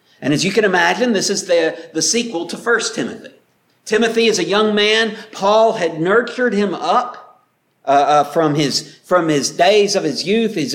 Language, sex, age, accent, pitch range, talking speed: English, male, 50-69, American, 195-235 Hz, 190 wpm